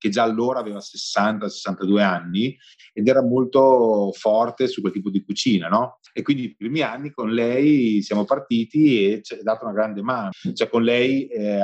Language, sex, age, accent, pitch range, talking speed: Italian, male, 30-49, native, 100-120 Hz, 180 wpm